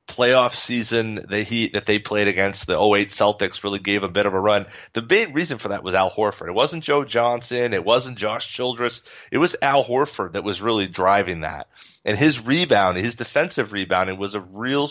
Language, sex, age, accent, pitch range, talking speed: English, male, 30-49, American, 100-130 Hz, 215 wpm